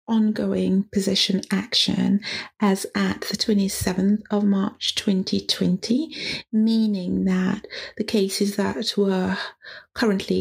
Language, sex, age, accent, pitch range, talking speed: English, female, 30-49, British, 180-210 Hz, 100 wpm